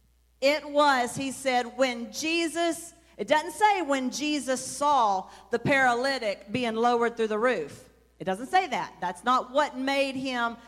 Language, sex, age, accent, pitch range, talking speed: English, female, 40-59, American, 225-295 Hz, 155 wpm